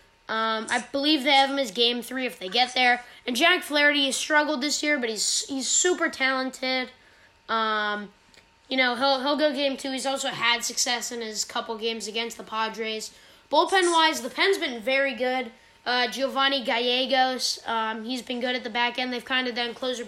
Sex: female